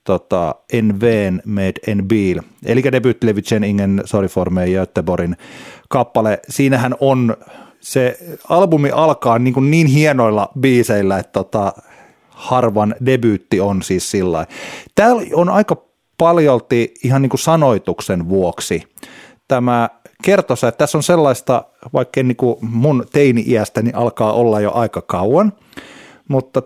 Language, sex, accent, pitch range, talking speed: Finnish, male, native, 105-135 Hz, 120 wpm